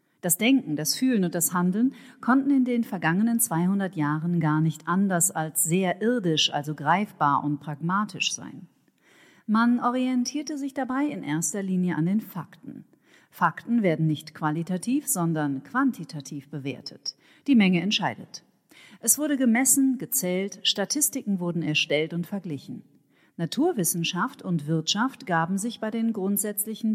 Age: 40-59